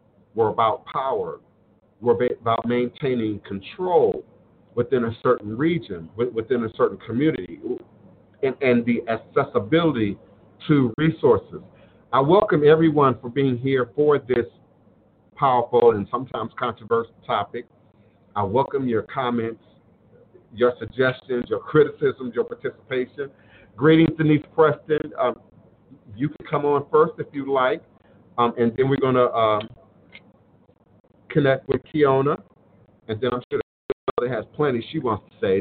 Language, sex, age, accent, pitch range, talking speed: English, male, 50-69, American, 110-150 Hz, 130 wpm